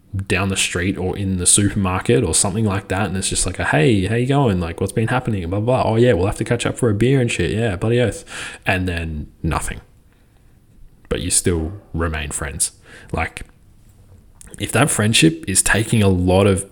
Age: 20-39